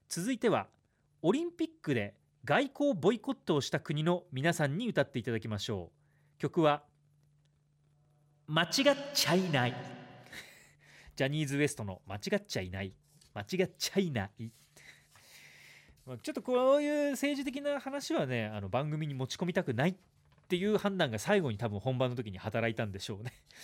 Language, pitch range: Japanese, 120-195 Hz